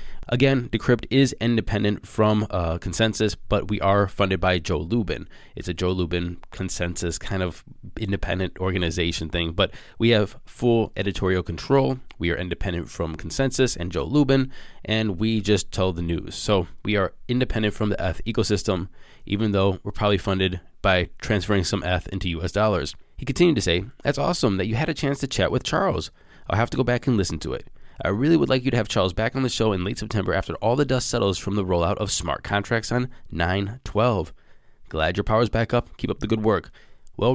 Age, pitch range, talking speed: 20-39, 90-120 Hz, 205 wpm